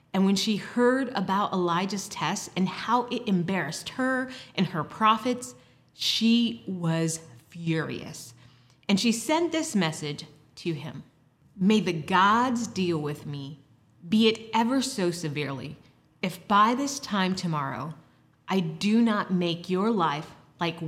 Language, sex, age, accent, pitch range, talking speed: English, female, 30-49, American, 160-220 Hz, 140 wpm